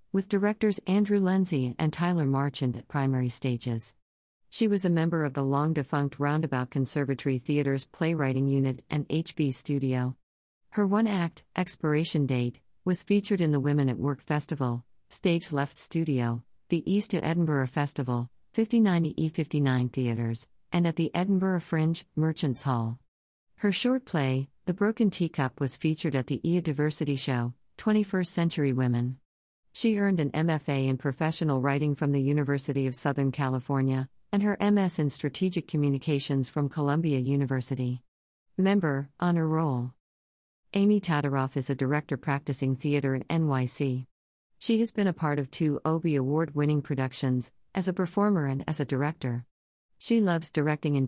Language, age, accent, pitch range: English, 50-69, American, 130-170 Hz